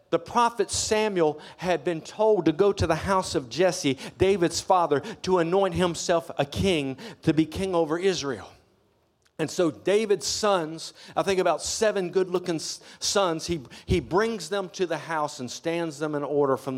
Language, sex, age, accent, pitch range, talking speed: English, male, 50-69, American, 130-185 Hz, 170 wpm